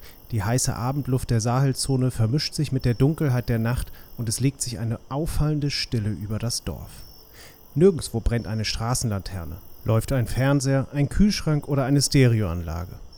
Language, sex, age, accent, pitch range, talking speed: German, male, 30-49, German, 105-135 Hz, 155 wpm